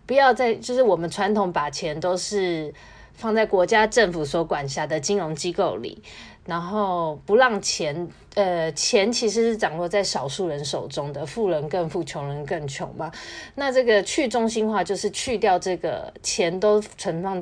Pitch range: 160-210 Hz